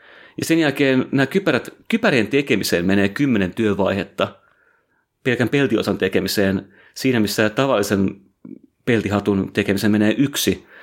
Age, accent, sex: 30-49, native, male